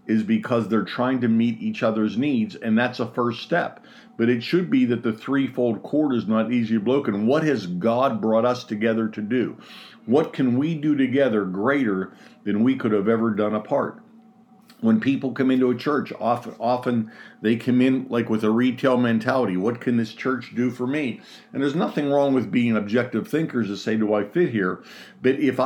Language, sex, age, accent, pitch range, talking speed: English, male, 50-69, American, 110-135 Hz, 200 wpm